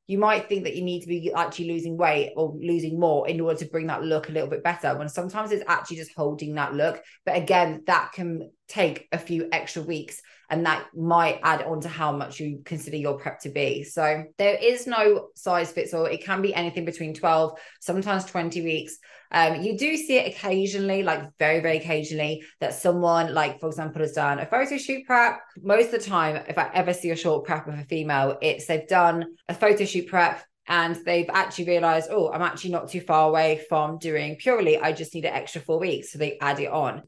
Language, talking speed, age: English, 225 wpm, 20-39